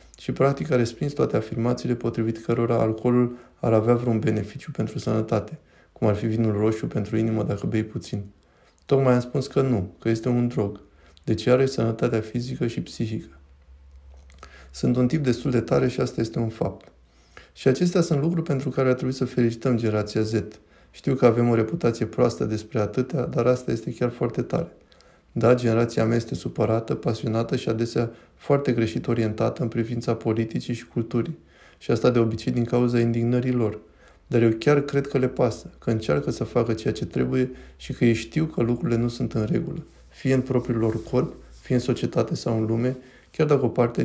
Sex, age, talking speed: male, 20-39, 190 wpm